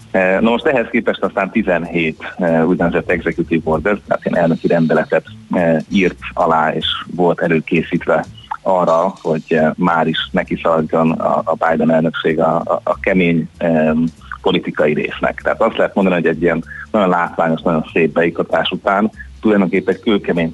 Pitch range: 80-90 Hz